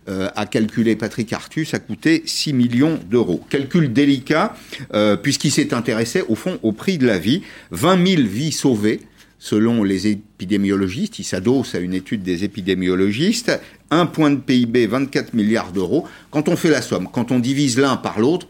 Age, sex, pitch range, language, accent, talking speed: 50-69, male, 100-145 Hz, French, French, 175 wpm